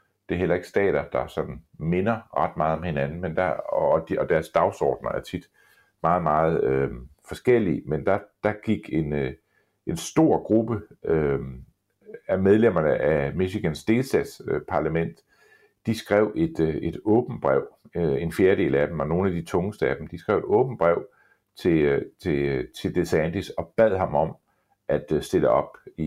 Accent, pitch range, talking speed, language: native, 80-100 Hz, 180 wpm, Danish